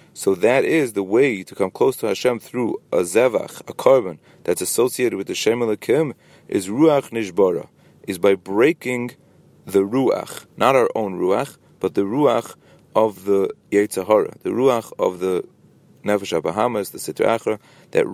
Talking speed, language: 155 wpm, English